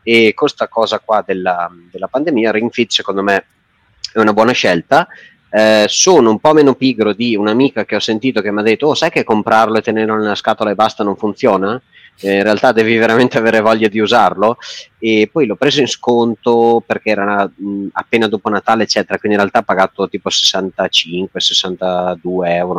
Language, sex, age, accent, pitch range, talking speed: Italian, male, 30-49, native, 95-115 Hz, 190 wpm